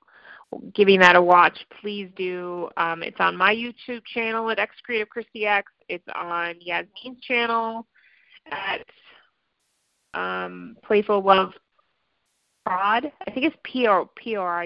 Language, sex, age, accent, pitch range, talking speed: English, female, 30-49, American, 180-235 Hz, 135 wpm